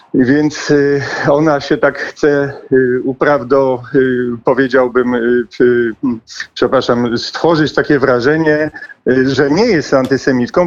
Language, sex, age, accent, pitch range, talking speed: Polish, male, 50-69, native, 115-150 Hz, 85 wpm